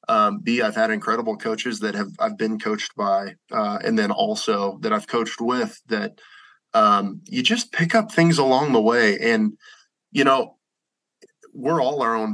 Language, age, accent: English, 20-39, American